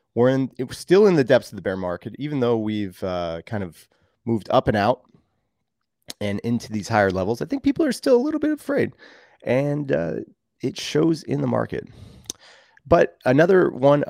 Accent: American